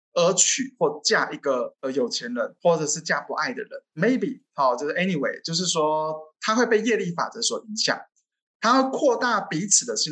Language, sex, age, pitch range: Chinese, male, 20-39, 160-260 Hz